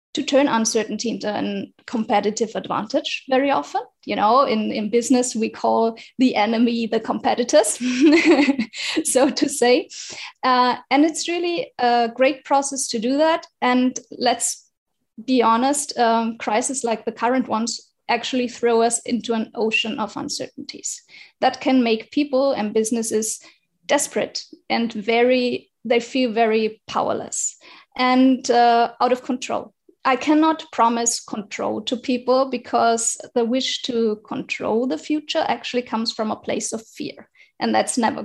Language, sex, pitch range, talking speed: English, female, 225-265 Hz, 145 wpm